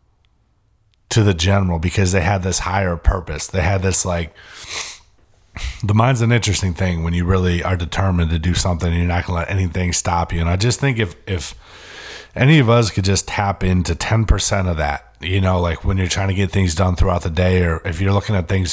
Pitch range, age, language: 90-105 Hz, 30-49, English